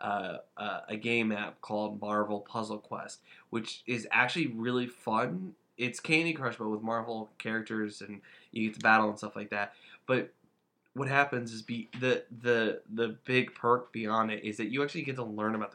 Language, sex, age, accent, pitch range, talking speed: English, male, 20-39, American, 105-125 Hz, 190 wpm